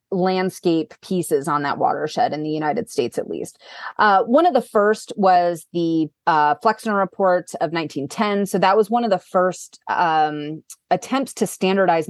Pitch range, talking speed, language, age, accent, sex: 160-215 Hz, 170 wpm, English, 30-49, American, female